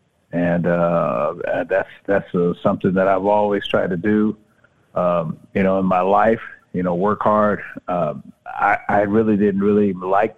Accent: American